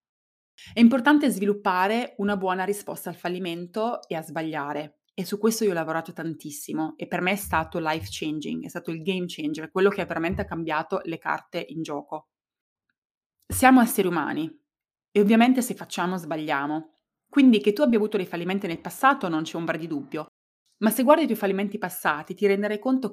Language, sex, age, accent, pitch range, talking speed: Italian, female, 20-39, native, 165-210 Hz, 185 wpm